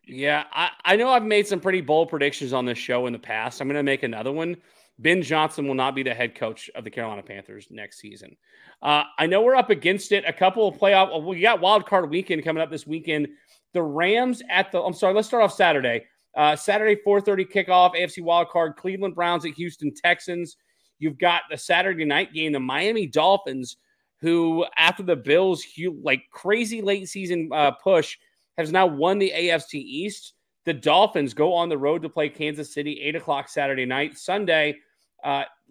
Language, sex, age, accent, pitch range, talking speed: English, male, 30-49, American, 145-185 Hz, 200 wpm